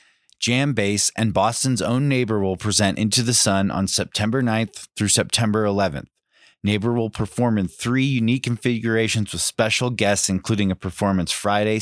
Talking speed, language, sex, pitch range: 155 wpm, English, male, 100-120 Hz